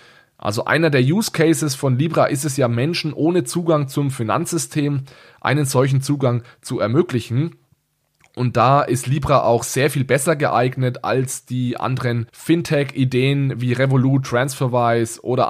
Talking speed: 145 wpm